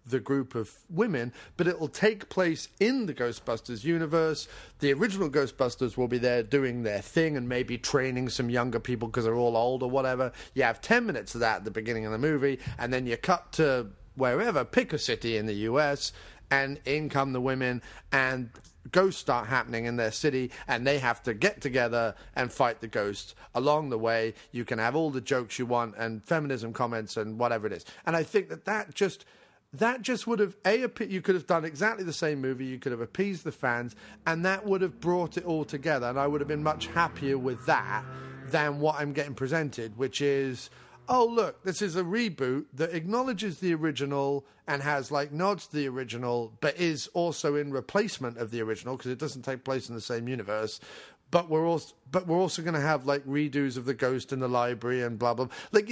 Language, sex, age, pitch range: English, male, 30-49, 120-165 Hz